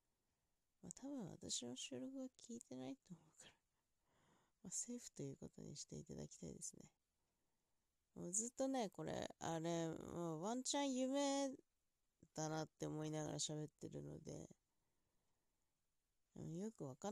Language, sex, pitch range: Japanese, female, 145-230 Hz